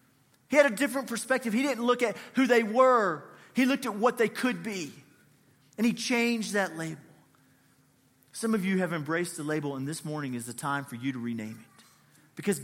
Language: English